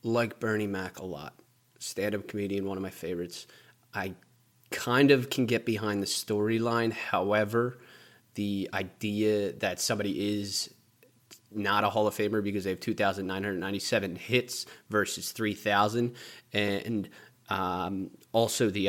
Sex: male